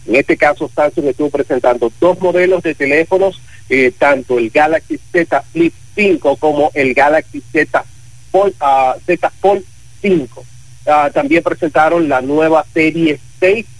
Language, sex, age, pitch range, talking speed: Spanish, male, 40-59, 130-170 Hz, 130 wpm